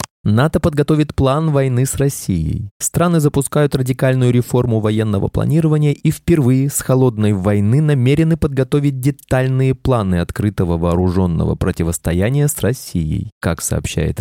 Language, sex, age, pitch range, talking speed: Russian, male, 20-39, 95-140 Hz, 120 wpm